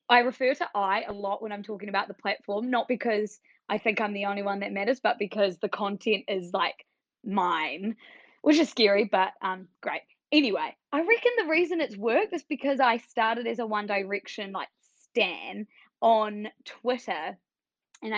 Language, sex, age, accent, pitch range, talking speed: English, female, 20-39, Australian, 200-250 Hz, 180 wpm